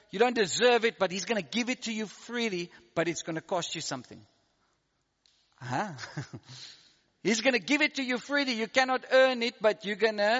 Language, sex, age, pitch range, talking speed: English, male, 50-69, 170-235 Hz, 215 wpm